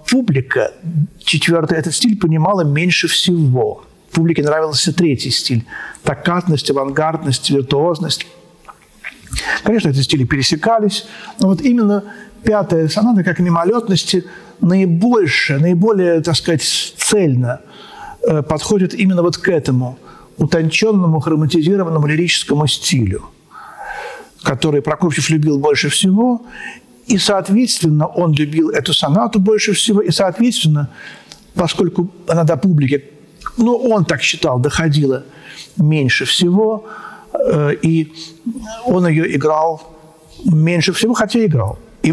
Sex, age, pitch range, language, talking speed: male, 50-69, 150-205 Hz, Russian, 110 wpm